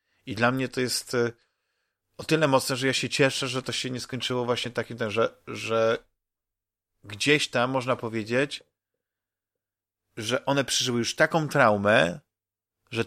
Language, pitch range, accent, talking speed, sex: Polish, 115-135 Hz, native, 140 wpm, male